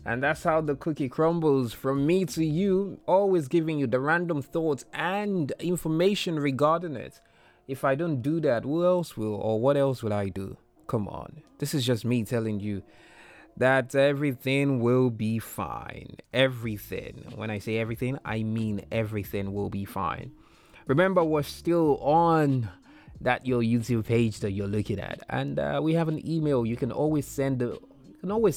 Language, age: English, 20-39